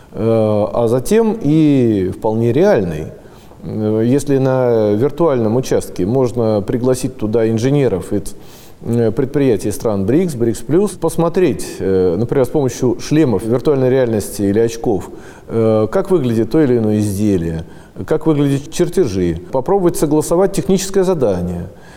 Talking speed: 110 wpm